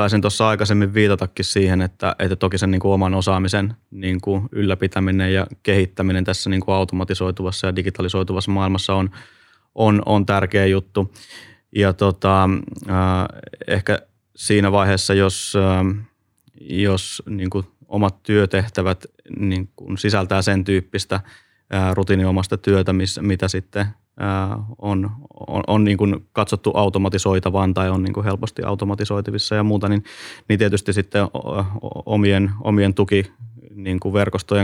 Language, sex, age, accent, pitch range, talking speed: Finnish, male, 20-39, native, 95-100 Hz, 125 wpm